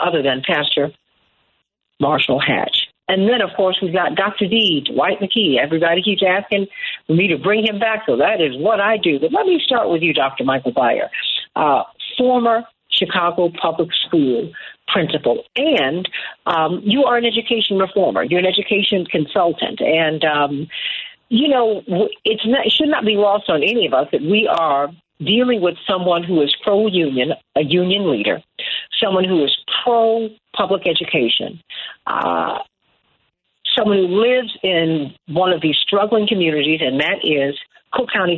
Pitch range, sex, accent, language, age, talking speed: 165-225 Hz, female, American, English, 50-69, 165 wpm